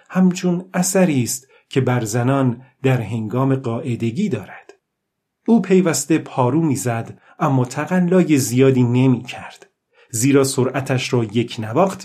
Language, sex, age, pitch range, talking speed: Persian, male, 40-59, 130-170 Hz, 110 wpm